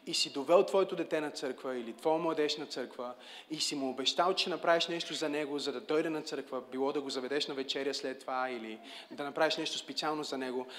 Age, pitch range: 30-49, 135-165 Hz